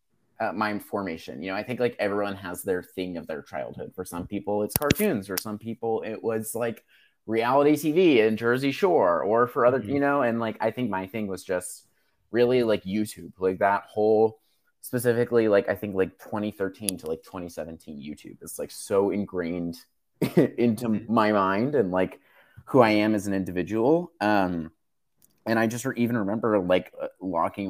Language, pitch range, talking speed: English, 95-115 Hz, 180 wpm